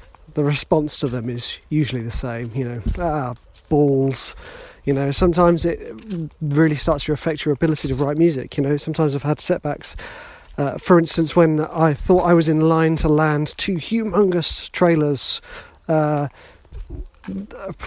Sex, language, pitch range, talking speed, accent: male, English, 135-160 Hz, 160 wpm, British